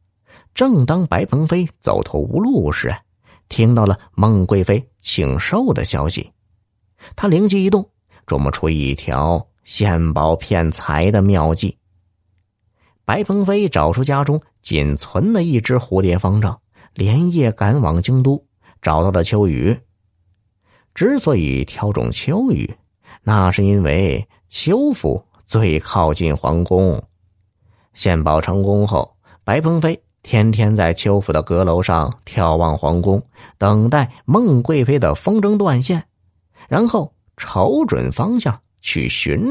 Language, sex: Chinese, male